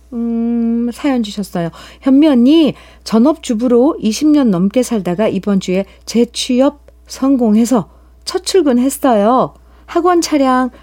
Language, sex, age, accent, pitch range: Korean, female, 50-69, native, 195-265 Hz